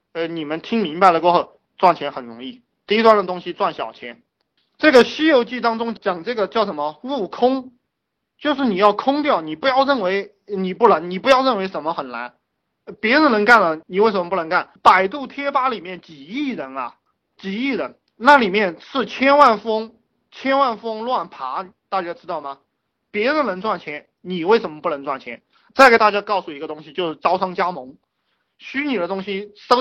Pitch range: 185-245 Hz